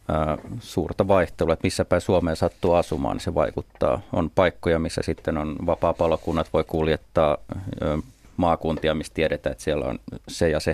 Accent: native